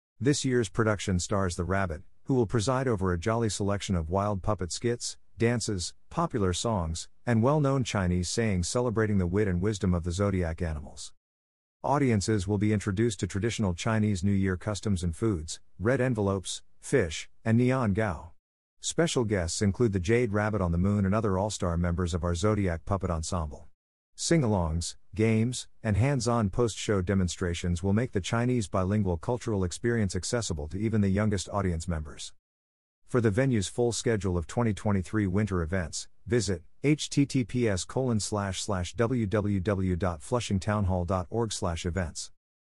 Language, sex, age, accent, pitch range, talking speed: English, male, 50-69, American, 90-115 Hz, 140 wpm